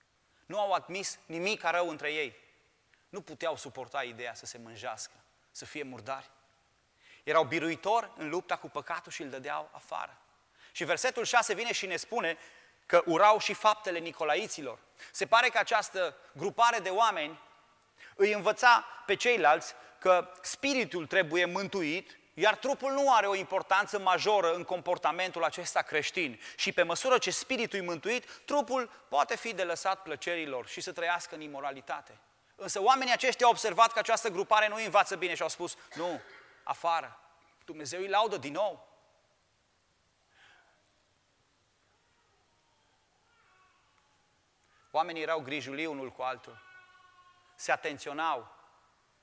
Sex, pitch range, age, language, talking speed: male, 160-220 Hz, 30-49, Romanian, 140 wpm